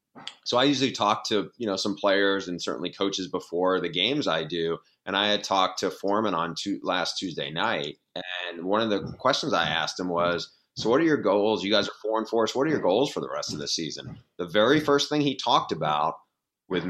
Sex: male